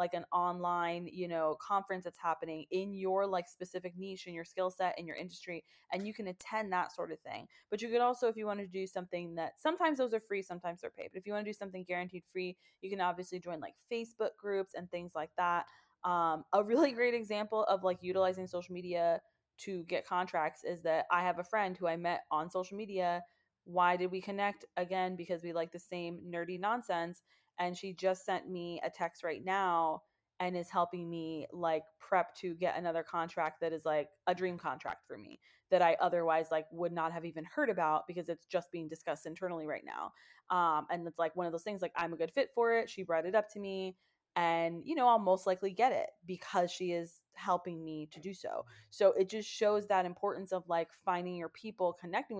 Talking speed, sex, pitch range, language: 225 wpm, female, 170-195 Hz, English